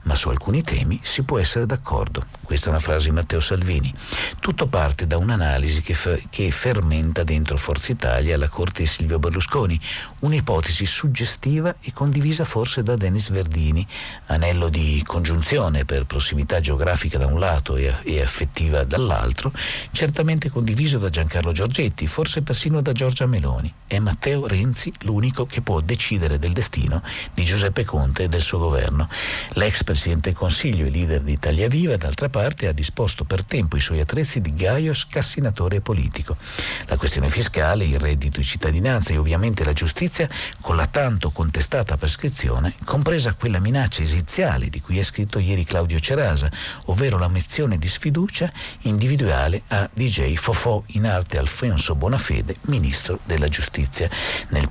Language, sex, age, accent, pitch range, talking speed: Italian, male, 50-69, native, 75-120 Hz, 155 wpm